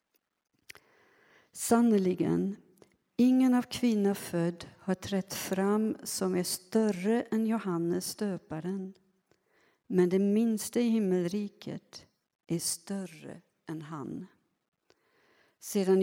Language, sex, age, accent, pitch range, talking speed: Swedish, female, 60-79, native, 175-205 Hz, 90 wpm